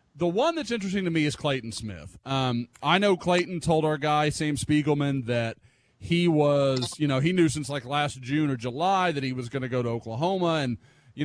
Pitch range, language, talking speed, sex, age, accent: 130-175 Hz, English, 220 wpm, male, 30-49, American